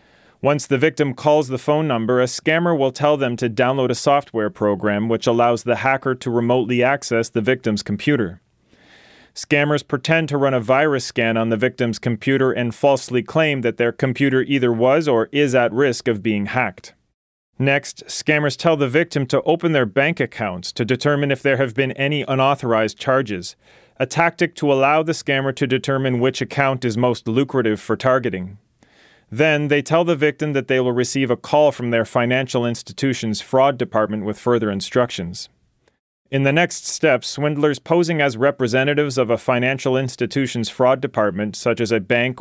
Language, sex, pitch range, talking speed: English, male, 115-140 Hz, 175 wpm